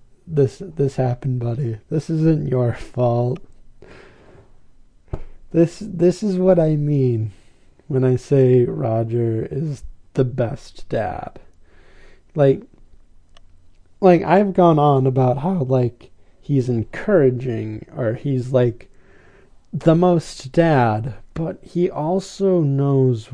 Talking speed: 110 wpm